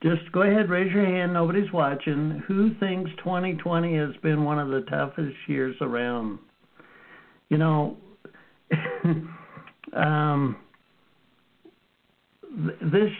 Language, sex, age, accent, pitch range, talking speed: English, male, 60-79, American, 145-180 Hz, 105 wpm